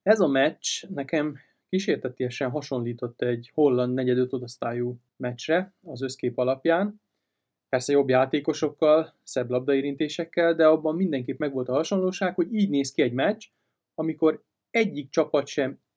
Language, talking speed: Hungarian, 130 wpm